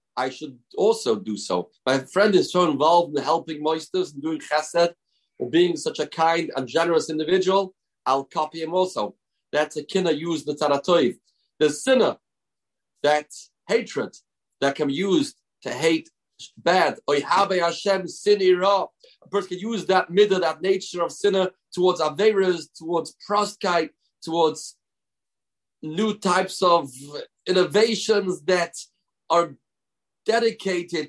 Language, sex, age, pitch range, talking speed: English, male, 40-59, 160-200 Hz, 135 wpm